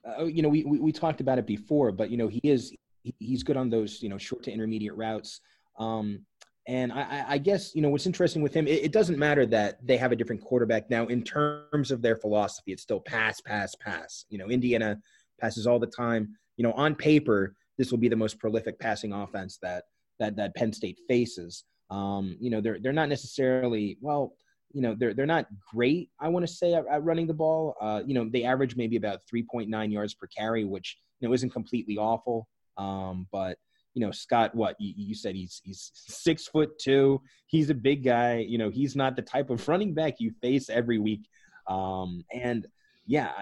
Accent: American